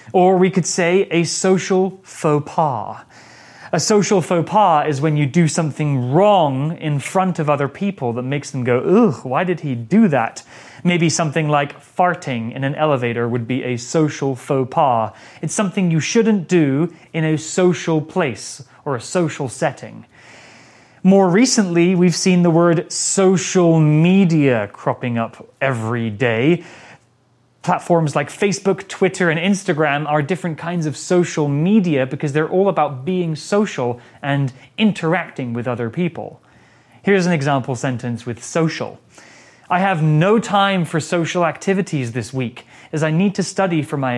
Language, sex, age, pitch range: Chinese, male, 30-49, 135-180 Hz